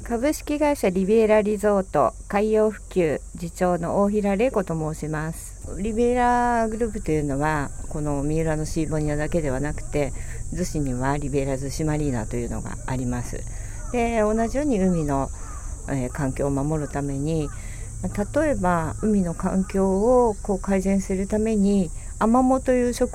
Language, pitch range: Japanese, 140-210 Hz